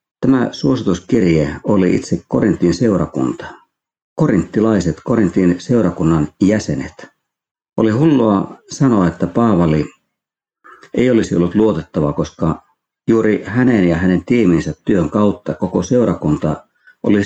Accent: native